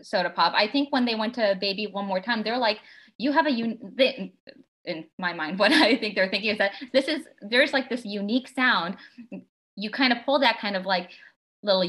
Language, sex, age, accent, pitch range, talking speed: English, female, 20-39, American, 185-255 Hz, 215 wpm